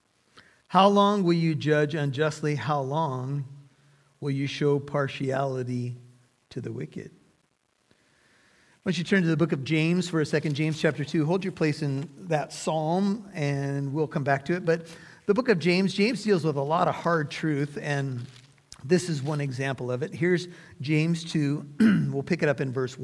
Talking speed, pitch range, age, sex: 185 wpm, 140-175 Hz, 50-69, male